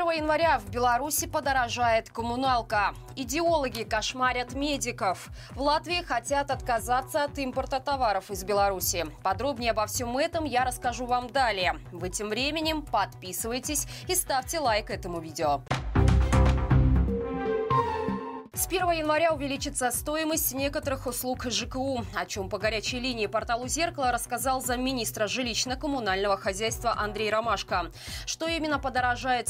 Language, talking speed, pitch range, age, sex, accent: Russian, 120 wpm, 220-295 Hz, 20-39, female, native